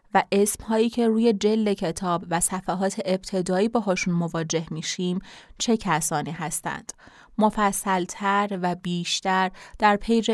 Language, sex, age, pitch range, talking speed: Persian, female, 20-39, 175-210 Hz, 130 wpm